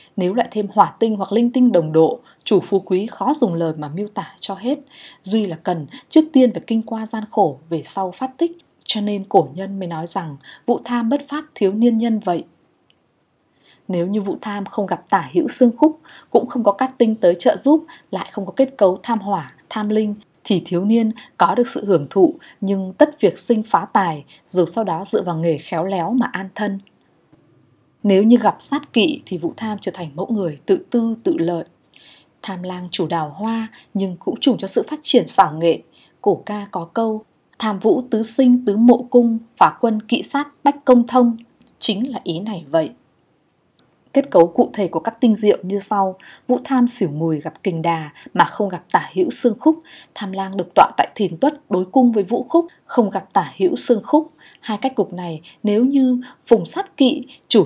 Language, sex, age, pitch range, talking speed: Vietnamese, female, 20-39, 180-245 Hz, 215 wpm